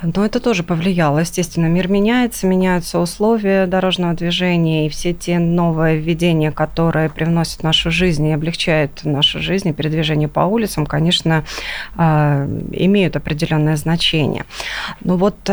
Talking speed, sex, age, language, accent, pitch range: 130 wpm, female, 20-39, Russian, native, 160-195 Hz